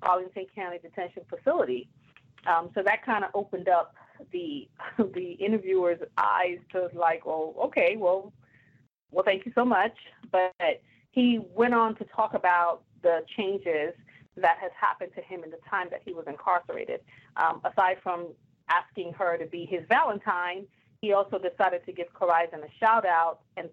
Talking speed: 165 wpm